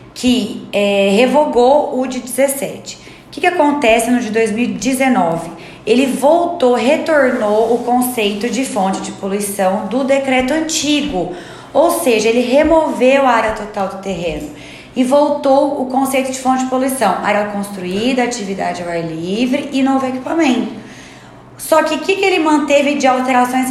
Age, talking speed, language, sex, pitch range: 20-39, 145 wpm, Portuguese, female, 200-270 Hz